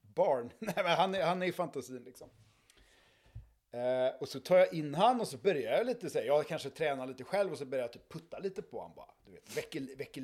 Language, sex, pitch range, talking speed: Swedish, male, 130-170 Hz, 215 wpm